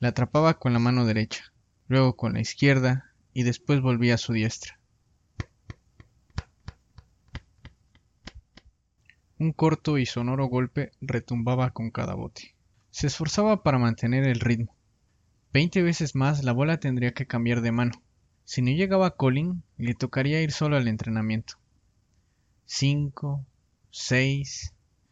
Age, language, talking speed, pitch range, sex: 20-39, Spanish, 125 wpm, 115-140 Hz, male